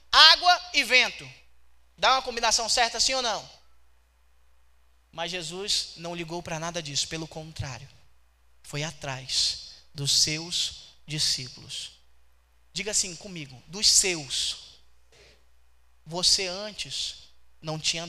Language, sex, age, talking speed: Portuguese, male, 20-39, 110 wpm